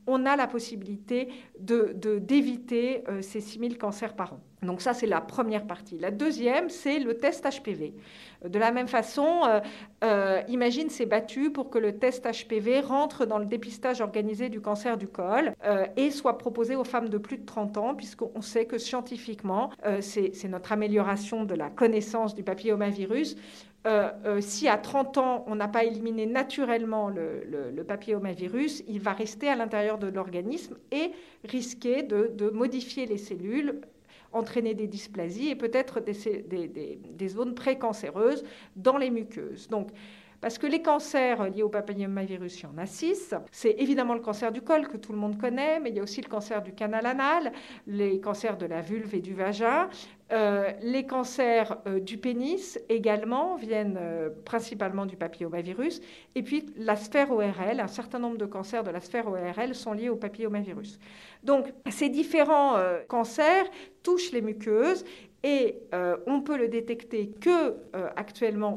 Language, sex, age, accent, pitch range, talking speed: French, female, 50-69, French, 205-255 Hz, 175 wpm